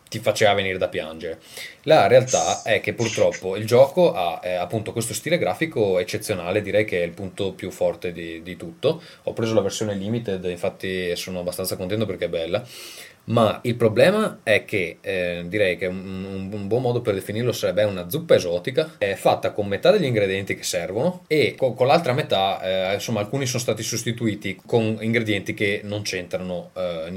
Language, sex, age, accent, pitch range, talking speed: Italian, male, 20-39, native, 95-125 Hz, 185 wpm